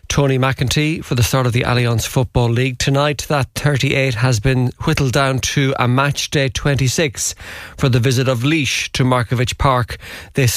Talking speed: 175 wpm